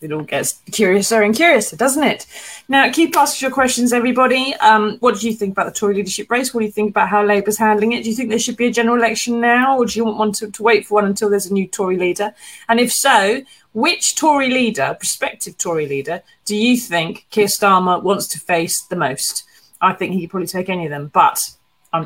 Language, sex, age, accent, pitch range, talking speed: English, female, 30-49, British, 190-250 Hz, 240 wpm